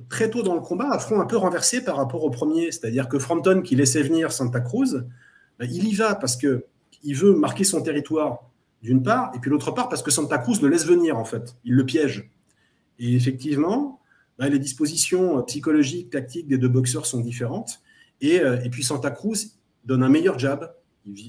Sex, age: male, 30-49